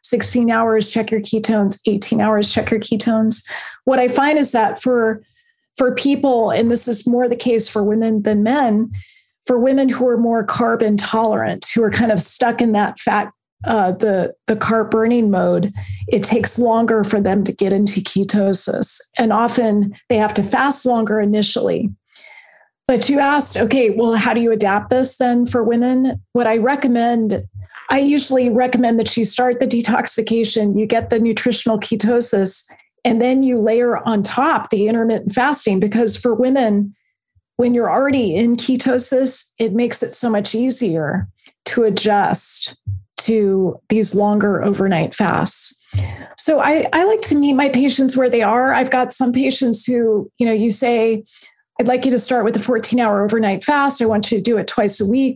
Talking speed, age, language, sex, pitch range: 180 wpm, 30-49, English, female, 215-250 Hz